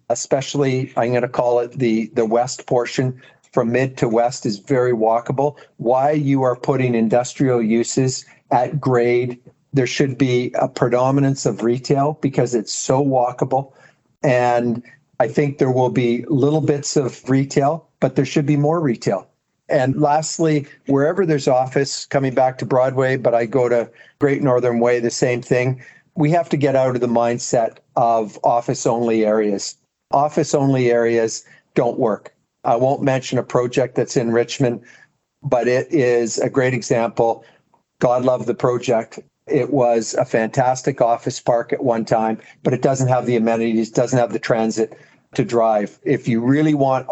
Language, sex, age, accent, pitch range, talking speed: English, male, 50-69, American, 120-140 Hz, 165 wpm